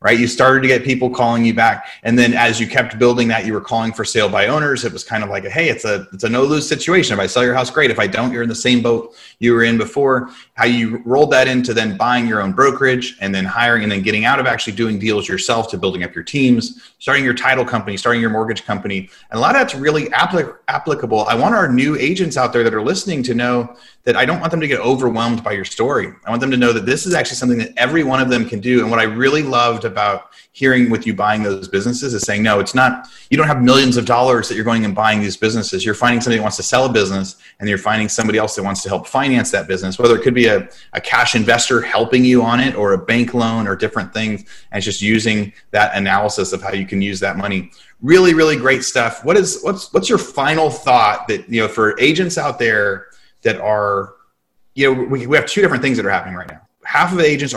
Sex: male